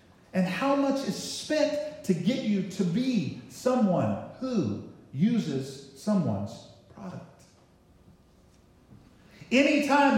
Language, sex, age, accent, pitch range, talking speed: English, male, 50-69, American, 140-225 Hz, 95 wpm